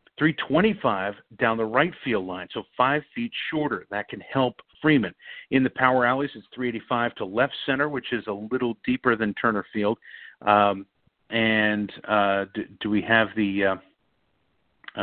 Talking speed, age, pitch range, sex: 155 wpm, 50-69, 100-125 Hz, male